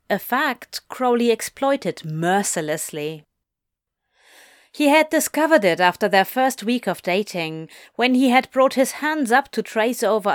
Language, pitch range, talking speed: English, 195-280 Hz, 145 wpm